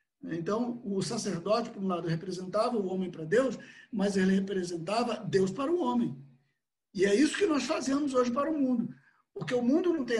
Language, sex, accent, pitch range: Portuguese, male, Brazilian, 185-245 Hz